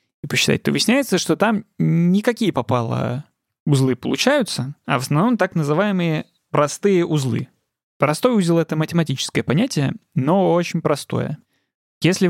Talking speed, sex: 125 wpm, male